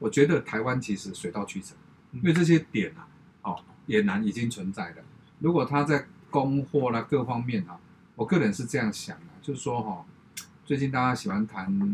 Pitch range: 105-150 Hz